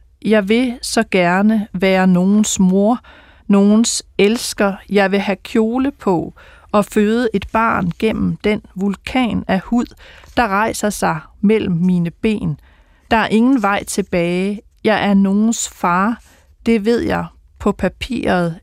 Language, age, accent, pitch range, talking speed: Danish, 40-59, native, 170-215 Hz, 140 wpm